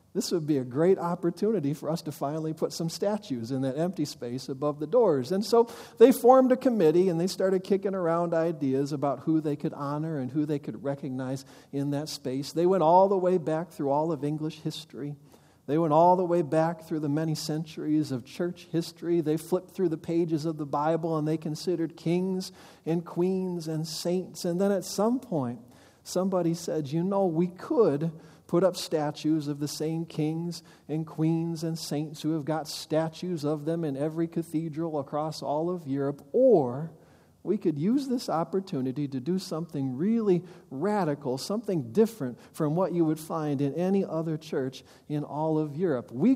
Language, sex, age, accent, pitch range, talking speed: English, male, 40-59, American, 150-180 Hz, 190 wpm